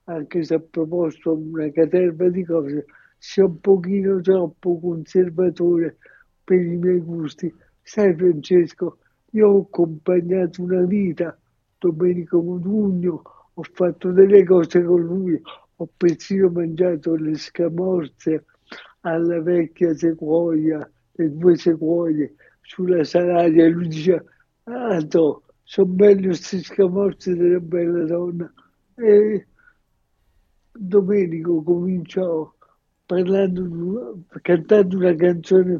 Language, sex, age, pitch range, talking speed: Italian, male, 60-79, 165-195 Hz, 105 wpm